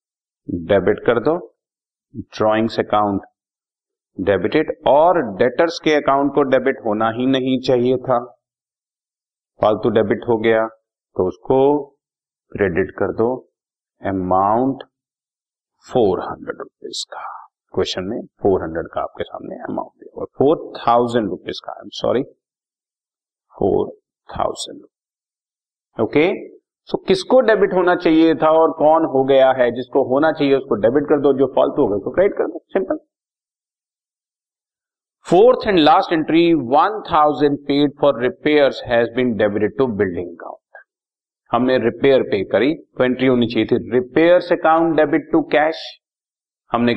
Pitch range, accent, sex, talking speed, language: 120-165 Hz, native, male, 130 wpm, Hindi